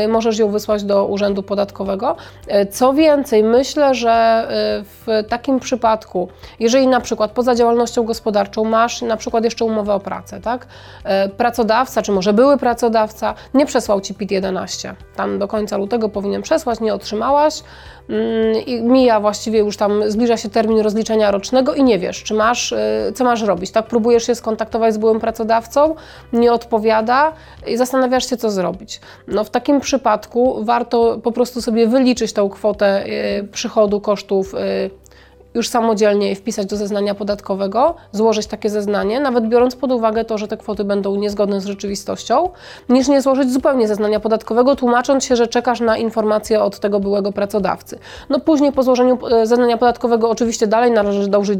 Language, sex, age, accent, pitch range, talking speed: Polish, female, 30-49, native, 205-245 Hz, 160 wpm